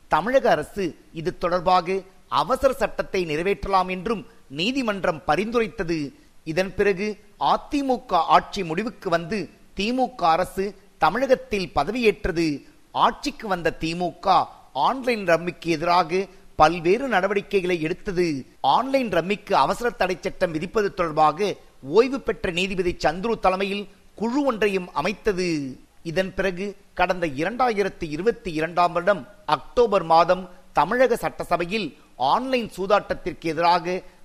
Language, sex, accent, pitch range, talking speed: Tamil, male, native, 170-210 Hz, 95 wpm